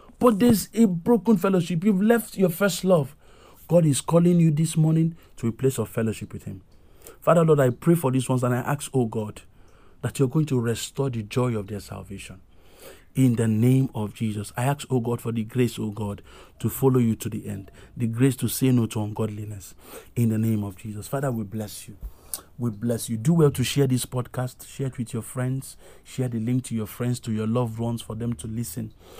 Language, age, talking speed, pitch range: English, 50-69, 225 wpm, 105-130 Hz